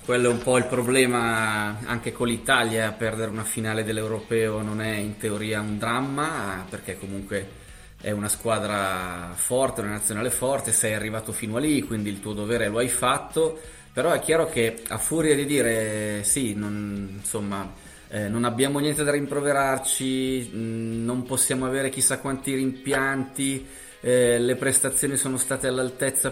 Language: Italian